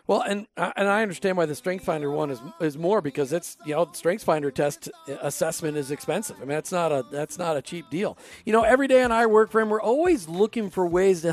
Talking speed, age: 240 wpm, 40-59